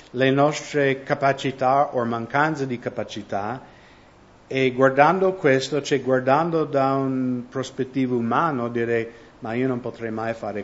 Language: English